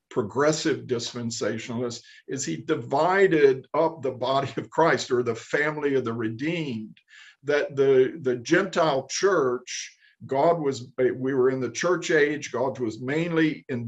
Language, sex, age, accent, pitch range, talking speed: English, male, 50-69, American, 125-155 Hz, 145 wpm